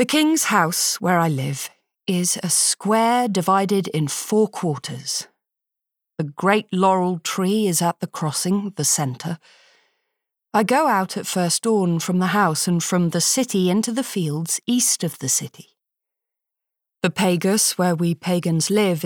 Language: English